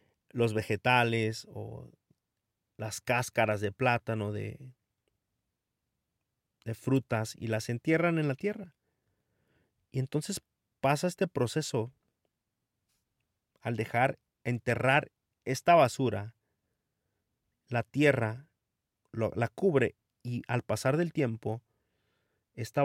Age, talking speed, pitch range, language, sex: 40-59, 95 wpm, 105-125 Hz, Spanish, male